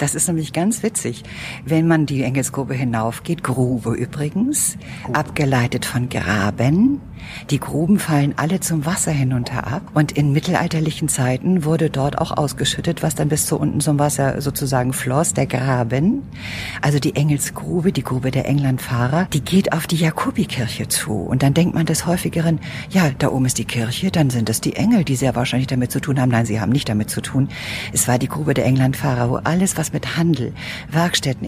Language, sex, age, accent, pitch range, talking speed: German, female, 50-69, German, 125-155 Hz, 185 wpm